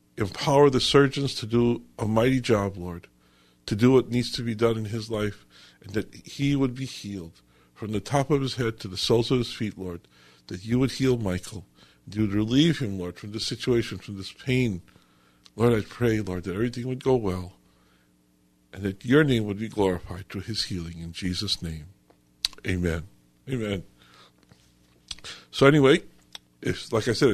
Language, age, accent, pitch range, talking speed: English, 50-69, American, 90-130 Hz, 180 wpm